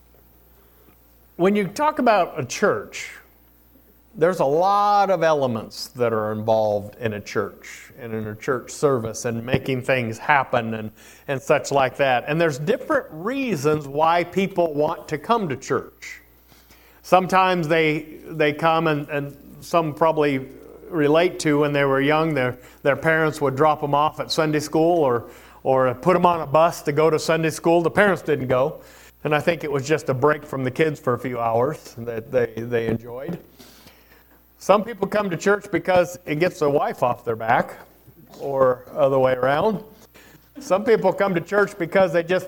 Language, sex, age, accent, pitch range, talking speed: English, male, 50-69, American, 125-175 Hz, 180 wpm